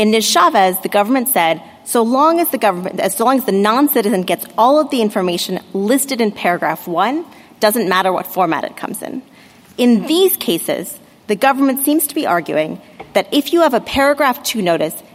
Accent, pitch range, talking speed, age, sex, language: American, 190-250 Hz, 180 wpm, 30-49, female, English